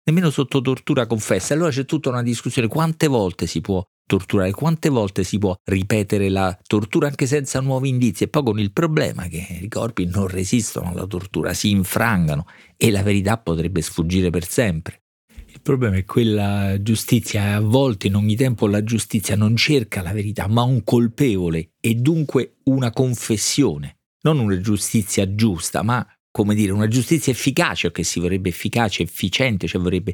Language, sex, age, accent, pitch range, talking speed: Italian, male, 40-59, native, 95-125 Hz, 170 wpm